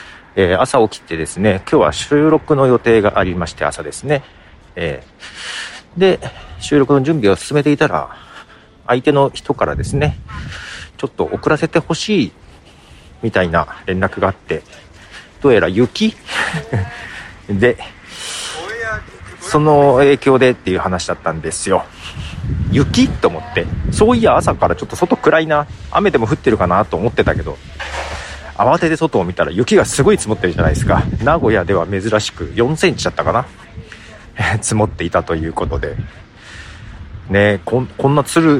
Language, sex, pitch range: Japanese, male, 90-140 Hz